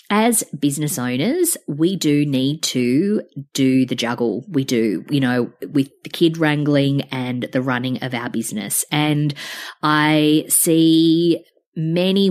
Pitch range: 135-180 Hz